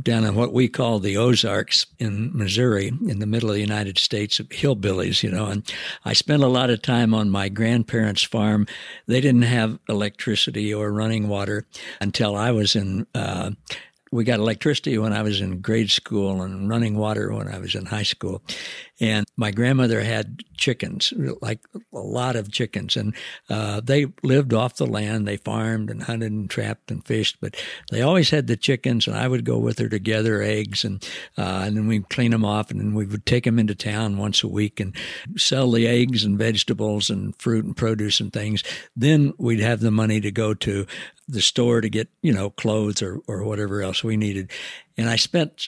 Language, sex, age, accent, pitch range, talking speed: English, male, 60-79, American, 105-125 Hz, 205 wpm